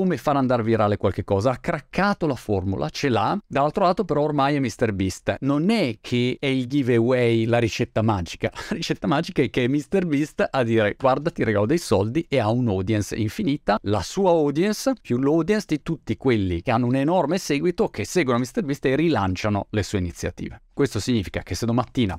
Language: Italian